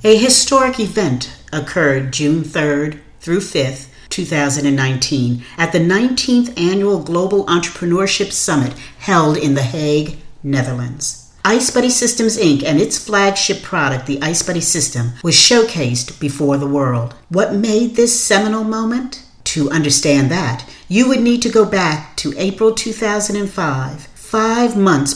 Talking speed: 135 wpm